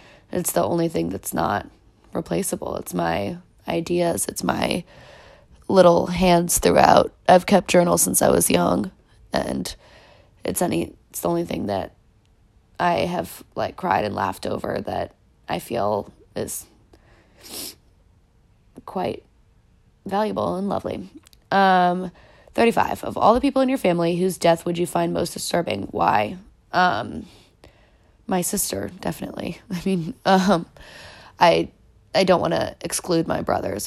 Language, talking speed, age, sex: English, 135 wpm, 20-39, female